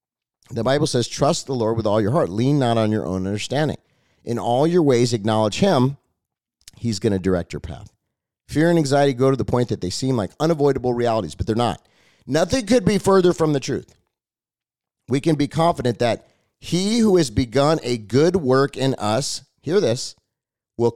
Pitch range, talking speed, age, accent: 115-170 Hz, 195 wpm, 40-59, American